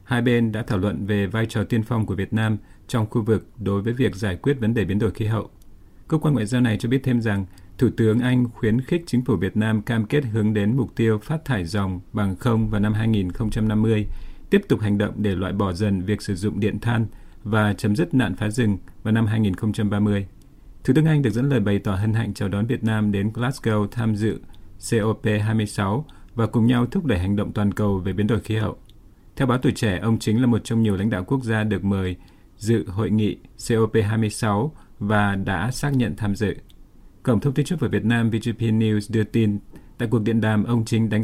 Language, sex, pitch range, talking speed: Vietnamese, male, 105-120 Hz, 230 wpm